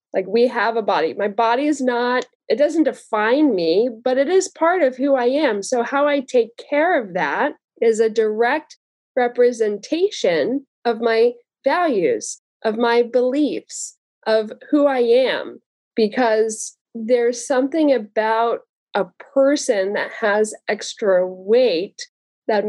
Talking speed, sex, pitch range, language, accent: 140 wpm, female, 205-265 Hz, English, American